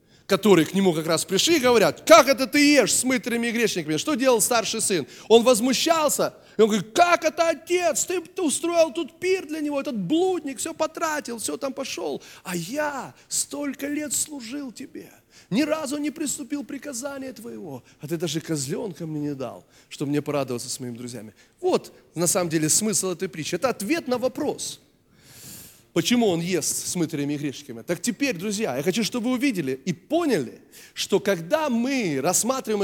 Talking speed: 180 wpm